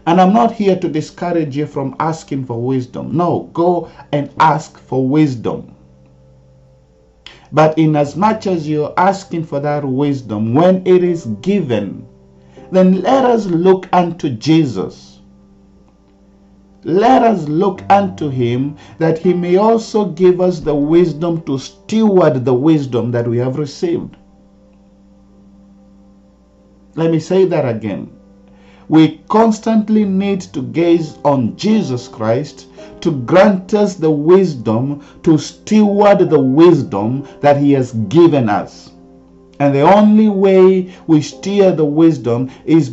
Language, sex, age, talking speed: English, male, 50-69, 130 wpm